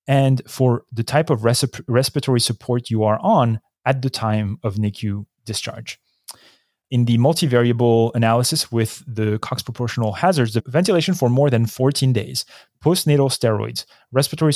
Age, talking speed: 30-49, 145 wpm